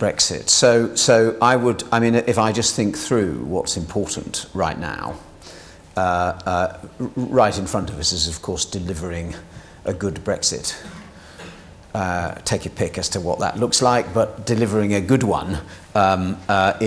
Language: English